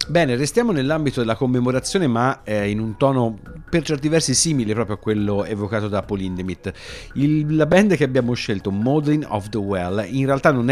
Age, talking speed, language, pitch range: 30-49, 185 wpm, Italian, 100-135 Hz